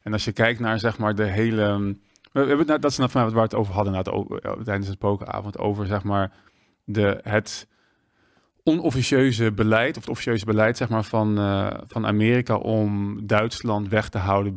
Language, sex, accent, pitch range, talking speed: Dutch, male, Dutch, 100-115 Hz, 170 wpm